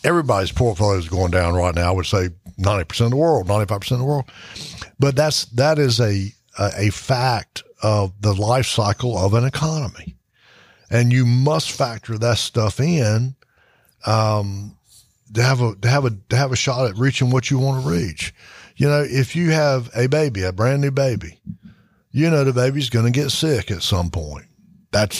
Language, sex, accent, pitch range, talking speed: English, male, American, 100-140 Hz, 190 wpm